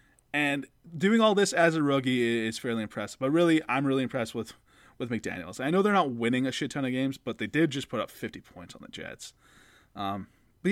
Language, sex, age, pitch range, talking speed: English, male, 20-39, 115-170 Hz, 230 wpm